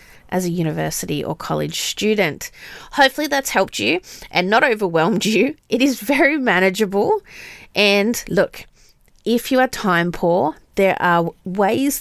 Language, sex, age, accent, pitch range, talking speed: English, female, 30-49, Australian, 170-230 Hz, 140 wpm